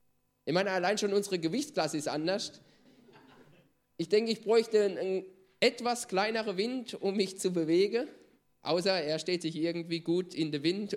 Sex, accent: male, German